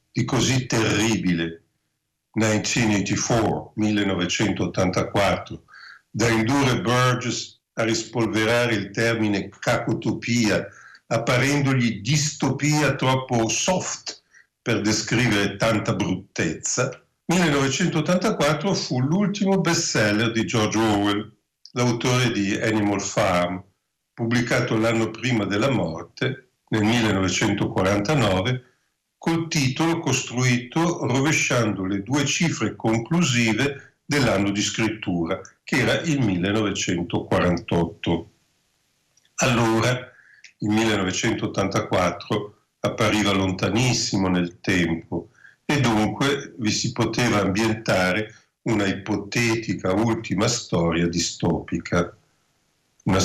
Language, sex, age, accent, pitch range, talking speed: Italian, male, 50-69, native, 105-130 Hz, 80 wpm